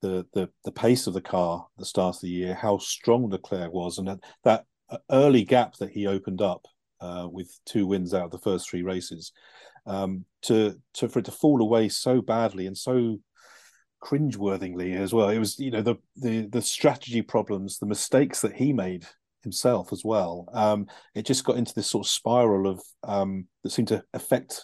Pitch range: 95-110 Hz